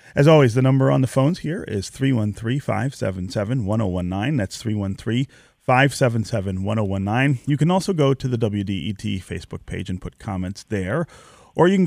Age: 30-49